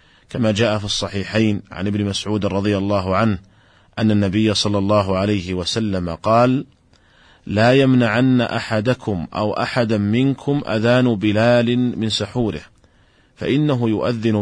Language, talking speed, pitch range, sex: Arabic, 120 wpm, 100-115 Hz, male